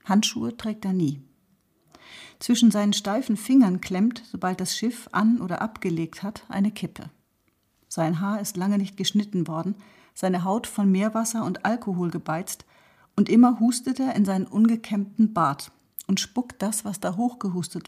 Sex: female